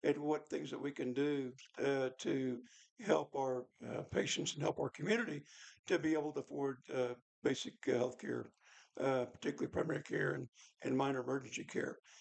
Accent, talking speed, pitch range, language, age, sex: American, 175 wpm, 125-145 Hz, English, 60-79, male